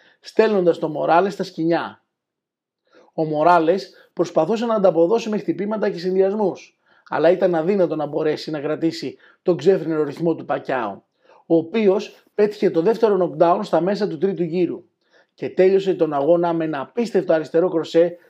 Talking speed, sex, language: 150 wpm, male, Greek